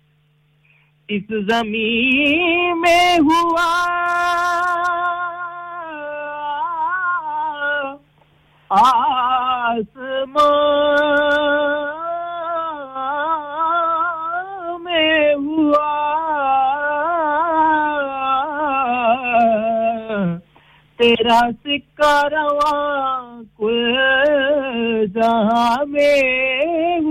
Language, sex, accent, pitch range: English, male, Indian, 185-295 Hz